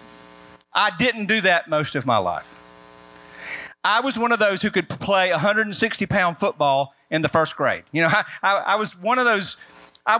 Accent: American